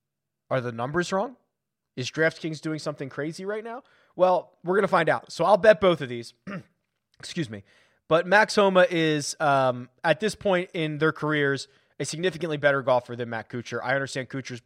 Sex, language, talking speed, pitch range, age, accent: male, English, 190 wpm, 130-180 Hz, 20-39, American